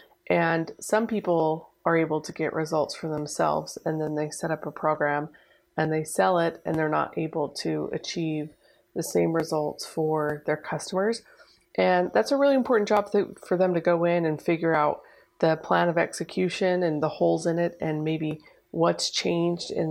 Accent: American